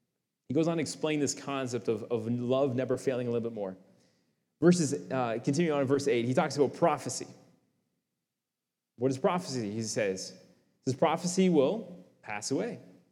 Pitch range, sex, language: 140-200 Hz, male, English